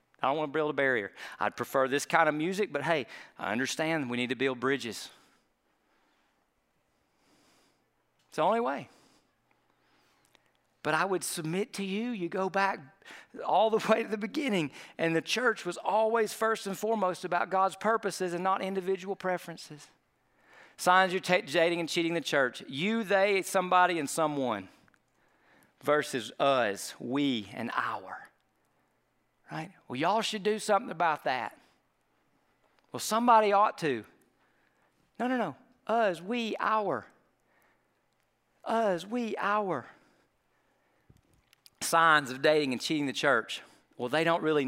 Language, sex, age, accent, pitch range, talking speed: English, male, 40-59, American, 135-195 Hz, 140 wpm